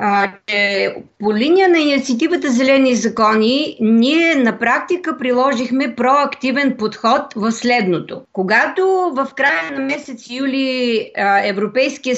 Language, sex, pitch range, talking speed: Bulgarian, female, 210-275 Hz, 110 wpm